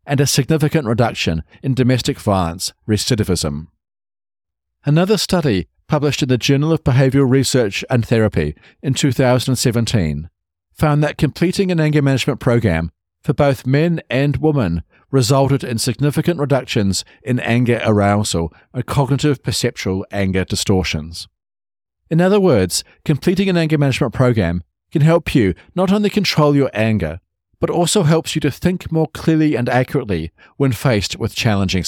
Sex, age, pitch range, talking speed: male, 50-69, 90-150 Hz, 140 wpm